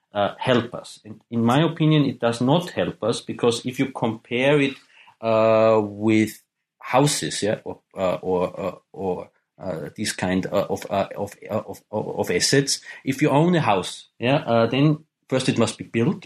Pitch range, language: 115-145 Hz, English